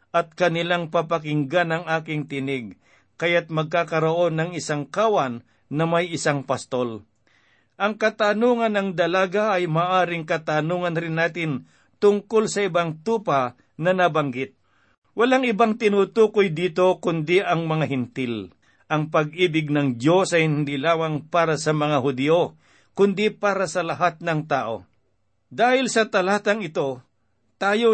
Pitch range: 150-195 Hz